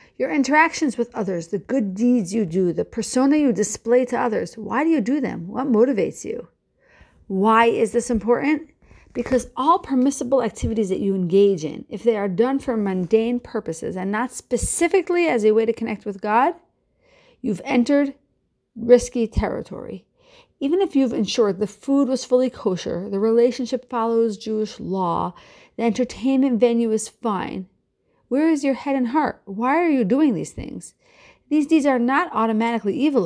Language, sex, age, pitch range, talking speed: English, female, 40-59, 215-275 Hz, 170 wpm